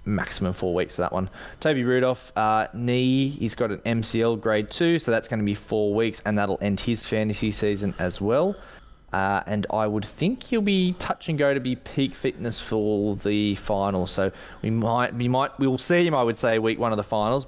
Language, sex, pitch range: English, male, 95-115 Hz